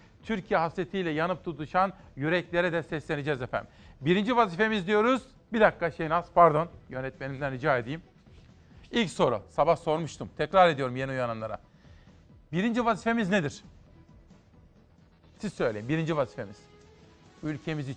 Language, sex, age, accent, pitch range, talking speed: Turkish, male, 40-59, native, 150-190 Hz, 115 wpm